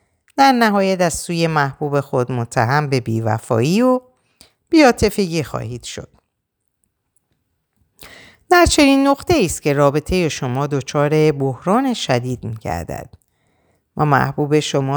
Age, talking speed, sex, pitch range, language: 50-69, 105 wpm, female, 125-180 Hz, Persian